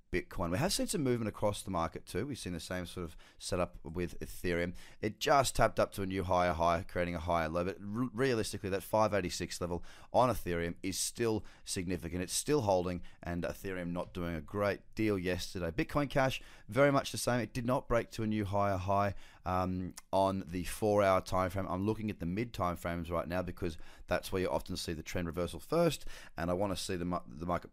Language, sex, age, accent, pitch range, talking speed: English, male, 30-49, Australian, 85-105 Hz, 215 wpm